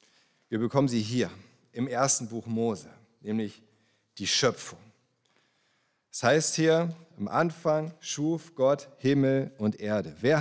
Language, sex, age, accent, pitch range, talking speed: German, male, 40-59, German, 110-155 Hz, 125 wpm